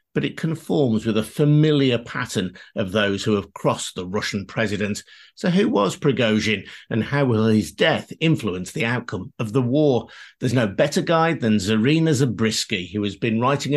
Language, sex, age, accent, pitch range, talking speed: English, male, 50-69, British, 110-145 Hz, 180 wpm